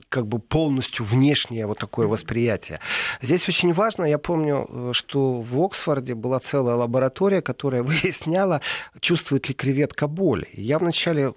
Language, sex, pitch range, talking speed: Russian, male, 120-165 Hz, 135 wpm